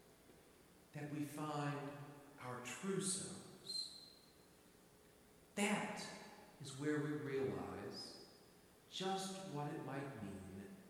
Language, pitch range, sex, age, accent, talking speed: English, 145-210 Hz, male, 50-69, American, 85 wpm